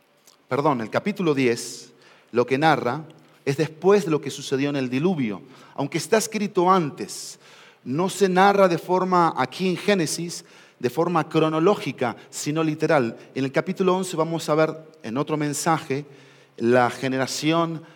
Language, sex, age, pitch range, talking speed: Spanish, male, 40-59, 140-180 Hz, 150 wpm